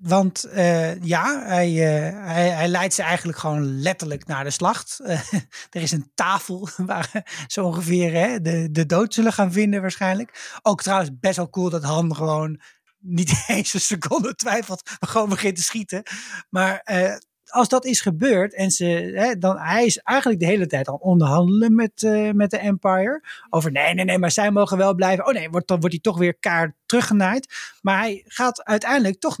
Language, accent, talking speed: Dutch, Dutch, 195 wpm